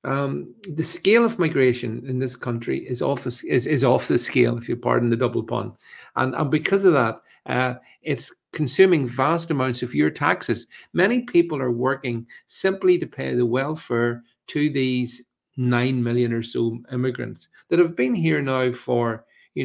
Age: 50-69